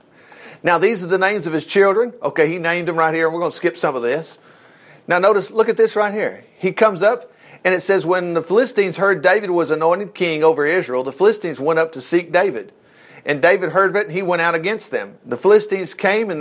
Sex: male